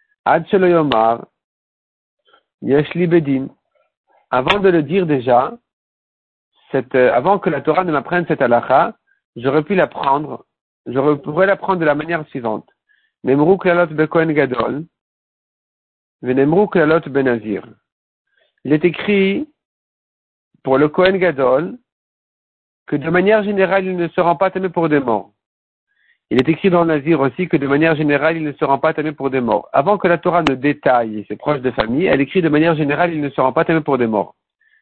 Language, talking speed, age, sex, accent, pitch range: French, 150 wpm, 50-69, male, French, 140-185 Hz